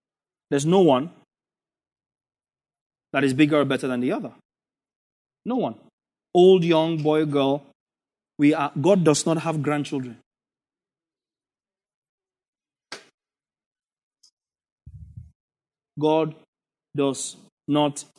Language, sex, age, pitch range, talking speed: English, male, 30-49, 135-160 Hz, 90 wpm